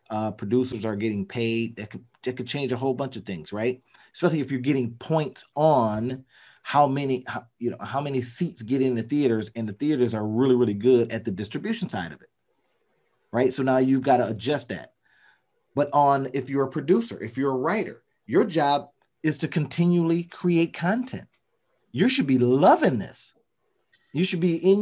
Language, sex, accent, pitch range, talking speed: English, male, American, 115-145 Hz, 195 wpm